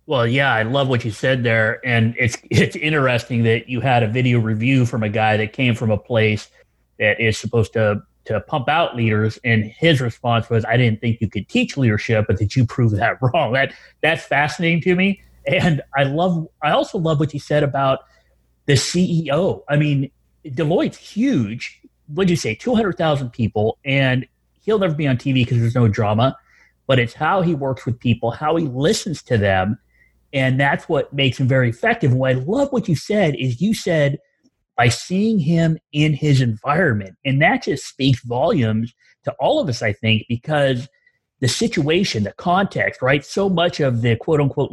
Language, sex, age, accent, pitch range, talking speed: English, male, 30-49, American, 115-155 Hz, 195 wpm